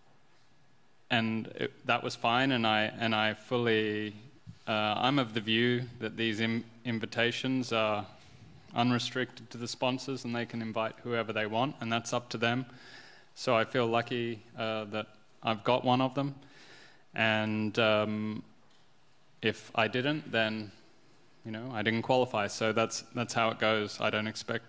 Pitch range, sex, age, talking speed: 105-120 Hz, male, 20-39, 165 wpm